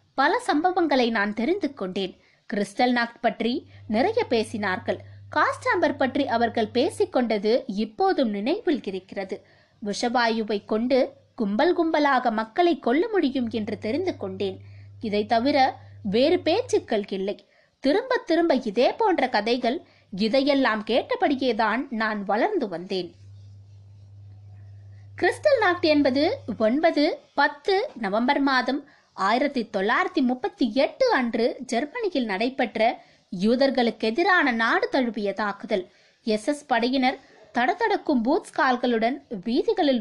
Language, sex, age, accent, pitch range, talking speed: Tamil, female, 20-39, native, 215-310 Hz, 80 wpm